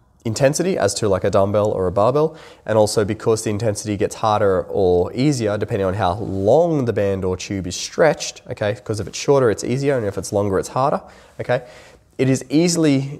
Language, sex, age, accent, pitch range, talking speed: English, male, 20-39, Australian, 95-125 Hz, 205 wpm